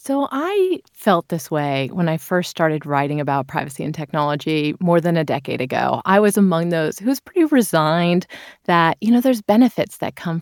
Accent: American